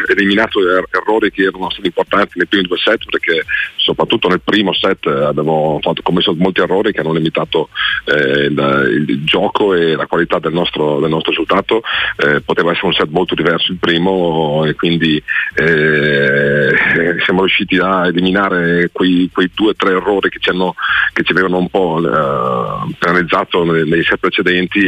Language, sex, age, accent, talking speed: Italian, male, 40-59, native, 175 wpm